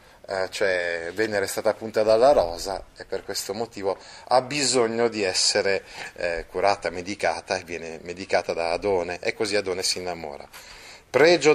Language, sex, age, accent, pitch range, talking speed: Italian, male, 30-49, native, 95-130 Hz, 150 wpm